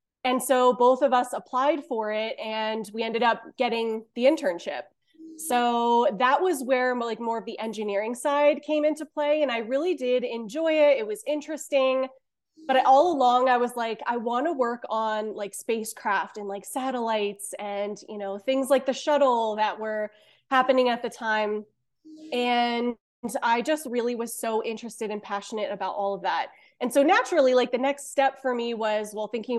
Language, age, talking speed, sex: English, 20-39, 185 wpm, female